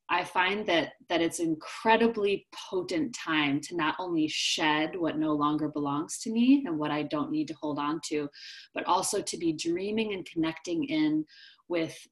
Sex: female